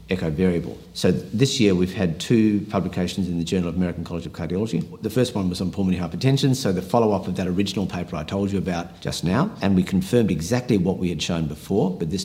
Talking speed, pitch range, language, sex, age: 235 wpm, 80-95 Hz, English, male, 50-69